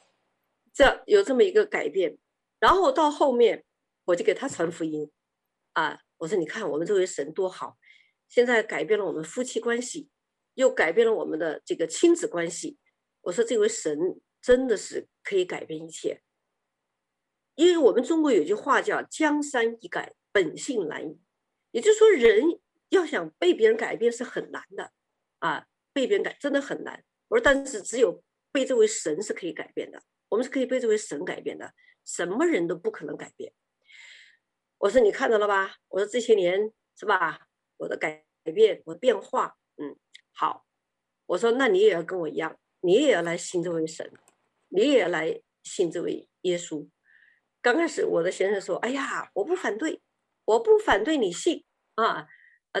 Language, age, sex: Chinese, 50-69, female